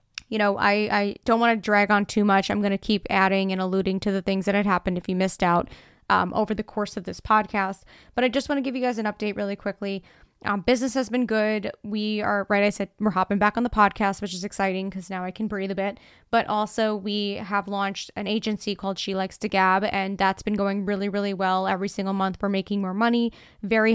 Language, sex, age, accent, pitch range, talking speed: English, female, 20-39, American, 195-215 Hz, 250 wpm